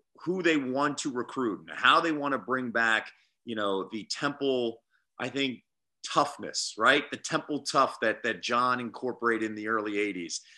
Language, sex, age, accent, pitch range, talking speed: English, male, 30-49, American, 120-160 Hz, 175 wpm